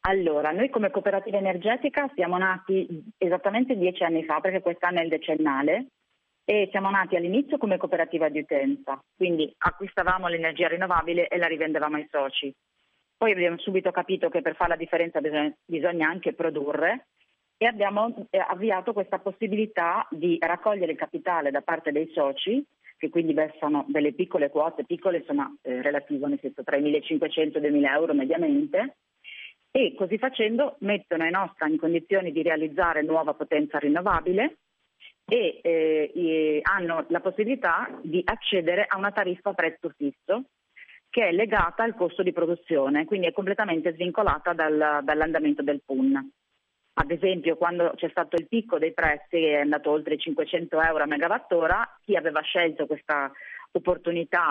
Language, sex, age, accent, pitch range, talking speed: Italian, female, 40-59, native, 155-190 Hz, 160 wpm